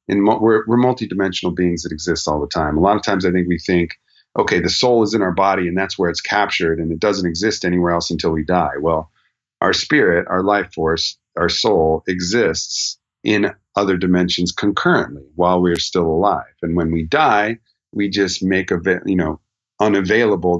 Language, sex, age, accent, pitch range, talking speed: English, male, 40-59, American, 85-100 Hz, 200 wpm